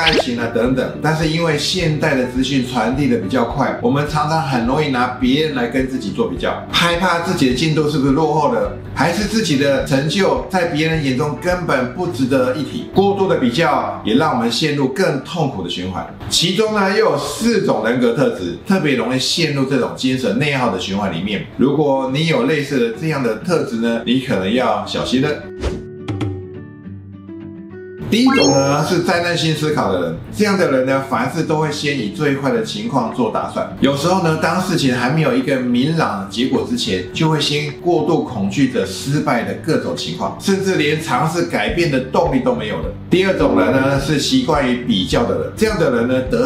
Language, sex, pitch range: Chinese, male, 130-170 Hz